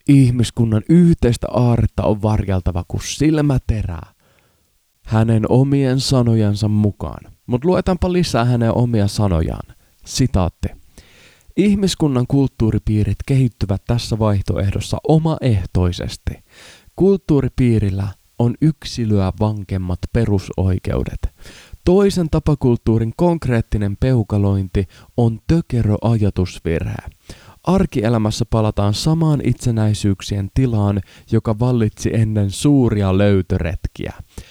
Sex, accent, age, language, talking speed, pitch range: male, native, 20-39, Finnish, 80 wpm, 100-130 Hz